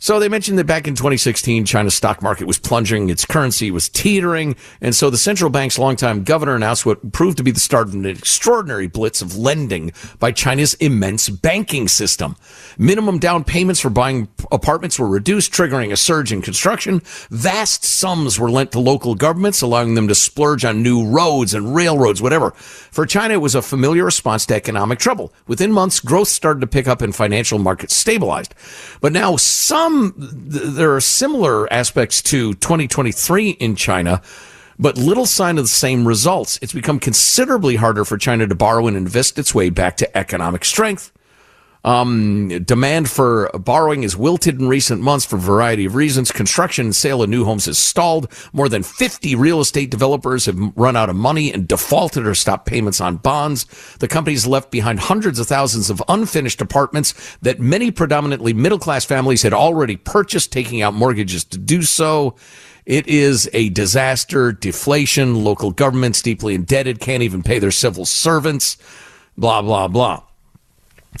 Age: 50-69